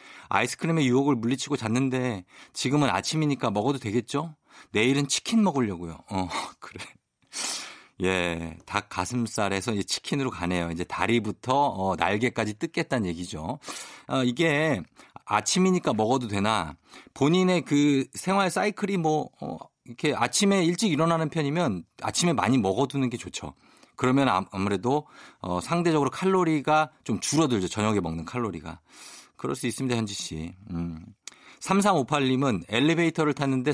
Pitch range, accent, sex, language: 100-150 Hz, native, male, Korean